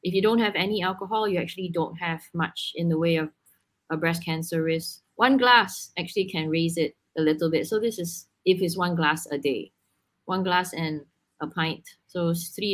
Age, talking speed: 20-39, 205 wpm